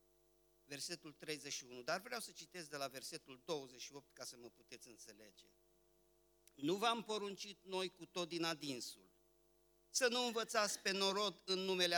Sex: male